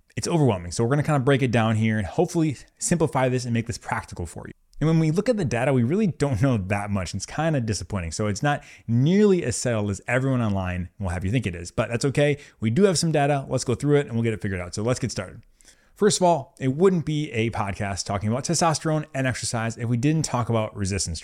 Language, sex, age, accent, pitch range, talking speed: English, male, 20-39, American, 105-135 Hz, 265 wpm